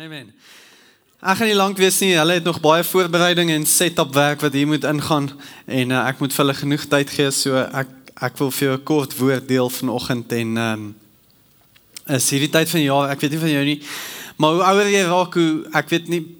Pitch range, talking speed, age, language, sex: 135-165 Hz, 210 wpm, 20-39, English, male